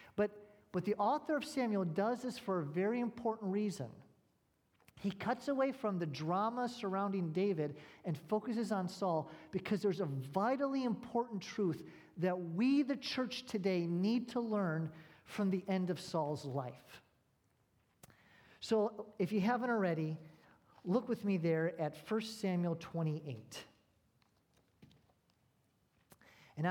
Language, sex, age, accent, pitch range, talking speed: English, male, 40-59, American, 135-195 Hz, 130 wpm